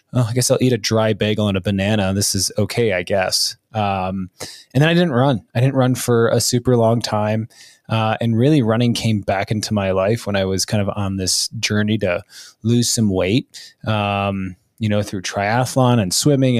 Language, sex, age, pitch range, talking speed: English, male, 20-39, 100-120 Hz, 210 wpm